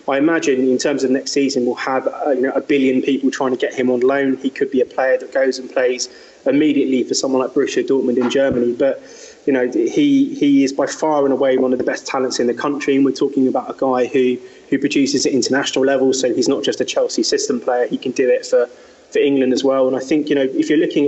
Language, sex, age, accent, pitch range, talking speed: English, male, 20-39, British, 130-155 Hz, 265 wpm